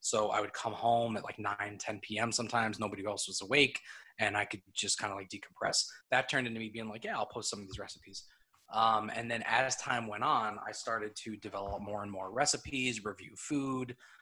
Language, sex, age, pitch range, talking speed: English, male, 20-39, 100-120 Hz, 225 wpm